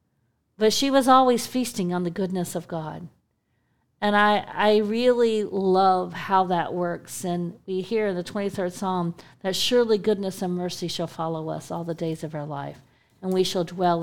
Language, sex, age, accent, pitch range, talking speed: English, female, 50-69, American, 185-240 Hz, 185 wpm